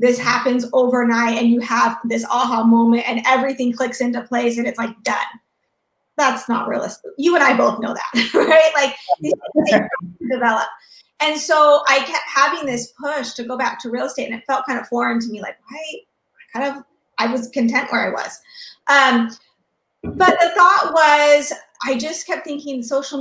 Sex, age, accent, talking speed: female, 30-49, American, 185 wpm